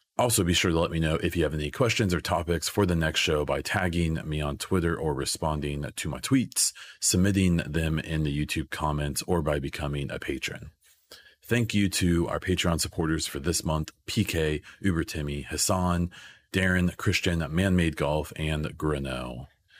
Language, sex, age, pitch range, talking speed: English, male, 30-49, 75-90 Hz, 175 wpm